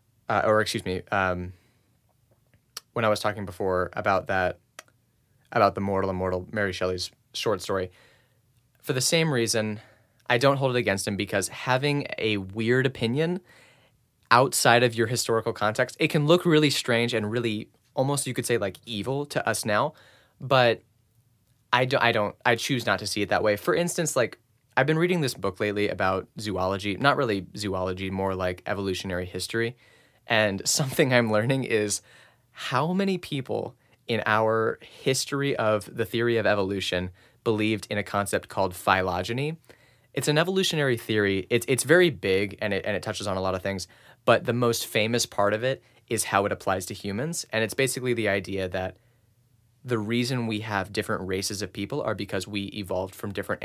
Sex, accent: male, American